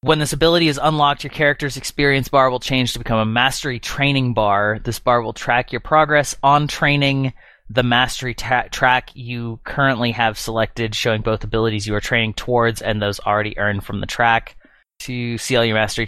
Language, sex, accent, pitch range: English, male, American, 105-130 Hz